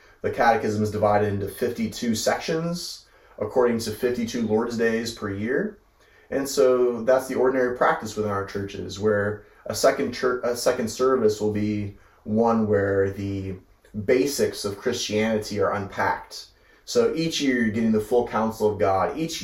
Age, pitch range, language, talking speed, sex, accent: 30-49, 105-120 Hz, English, 155 wpm, male, American